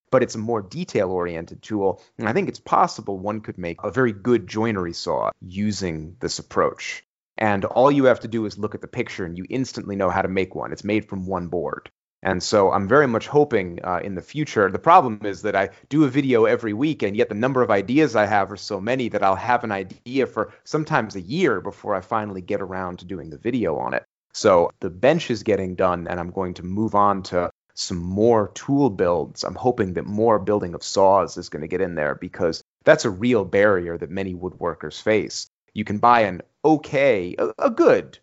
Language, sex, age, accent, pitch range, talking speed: English, male, 30-49, American, 95-120 Hz, 225 wpm